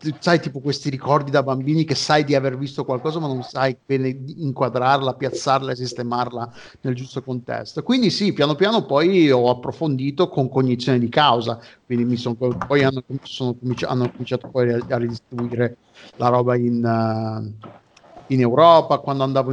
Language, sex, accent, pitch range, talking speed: Italian, male, native, 125-145 Hz, 165 wpm